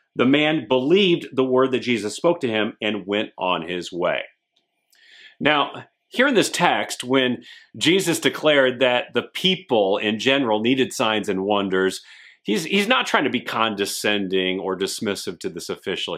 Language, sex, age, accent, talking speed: English, male, 40-59, American, 165 wpm